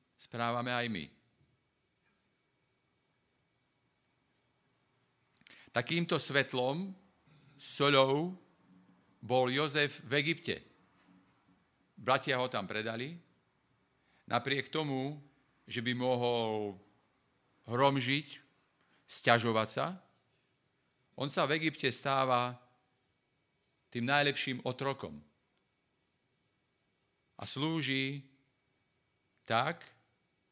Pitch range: 120-145 Hz